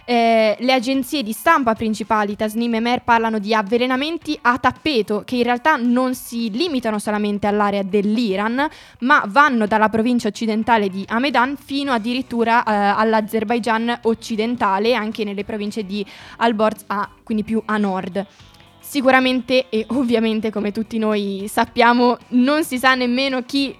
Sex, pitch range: female, 205-240 Hz